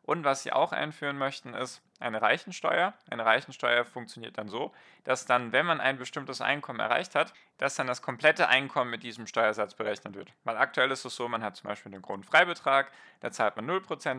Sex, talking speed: male, 200 wpm